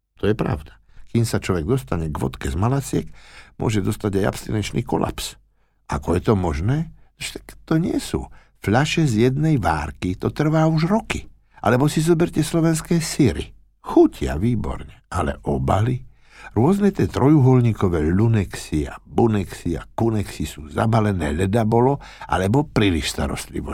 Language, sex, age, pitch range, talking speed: Slovak, male, 60-79, 85-130 Hz, 140 wpm